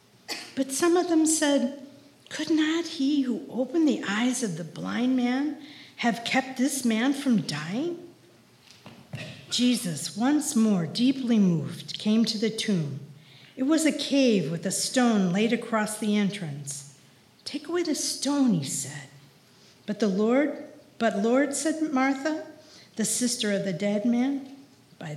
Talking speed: 150 wpm